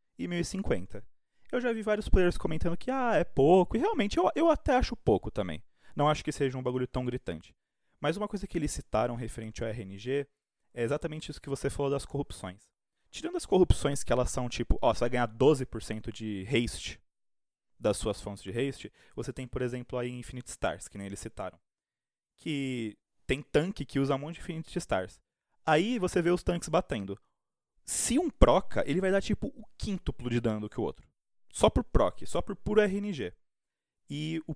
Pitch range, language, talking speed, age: 125-175 Hz, Portuguese, 200 wpm, 20-39